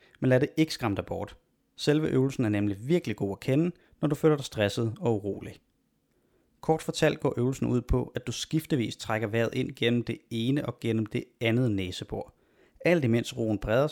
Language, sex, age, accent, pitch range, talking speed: Danish, male, 30-49, native, 110-135 Hz, 200 wpm